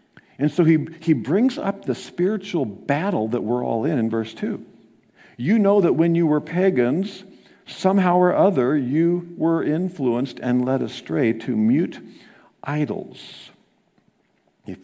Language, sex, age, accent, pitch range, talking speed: English, male, 50-69, American, 125-180 Hz, 145 wpm